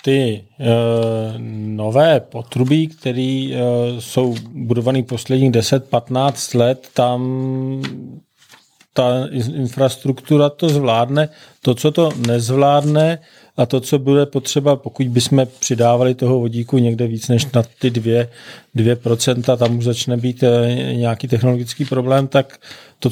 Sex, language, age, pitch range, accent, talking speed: male, Czech, 40-59, 125-145 Hz, native, 115 wpm